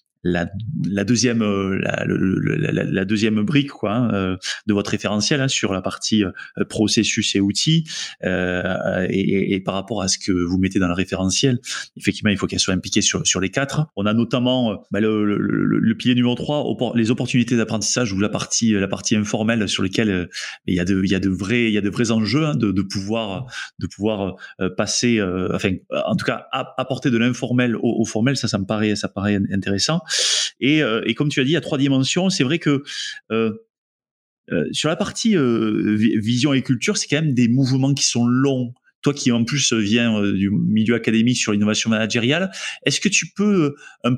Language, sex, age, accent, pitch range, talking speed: French, male, 20-39, French, 100-130 Hz, 210 wpm